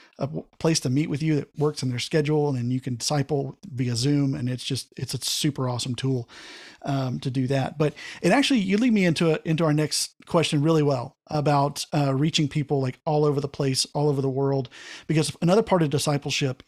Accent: American